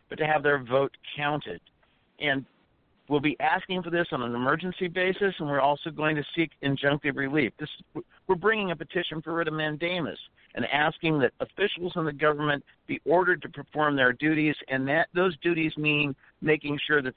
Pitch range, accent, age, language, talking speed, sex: 135-175 Hz, American, 50-69, English, 190 wpm, male